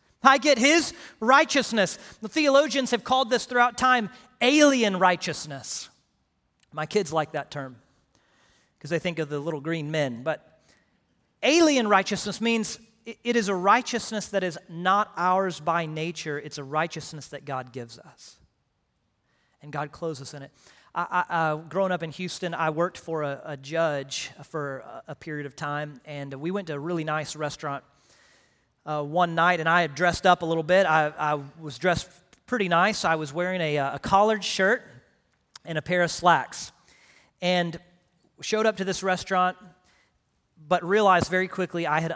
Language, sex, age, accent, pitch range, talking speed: English, male, 40-59, American, 155-195 Hz, 170 wpm